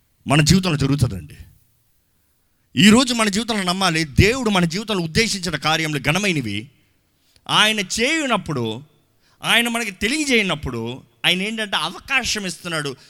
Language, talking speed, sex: Telugu, 100 wpm, male